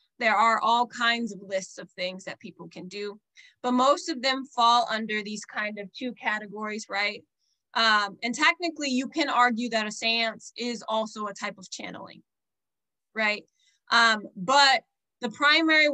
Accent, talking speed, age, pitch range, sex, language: American, 165 wpm, 20-39, 215-255 Hz, female, English